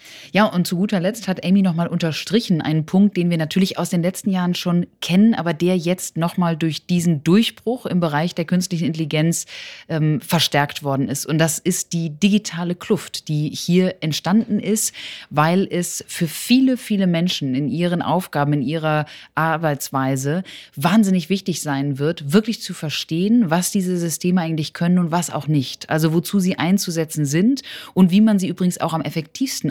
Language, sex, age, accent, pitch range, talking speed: German, female, 20-39, German, 155-190 Hz, 180 wpm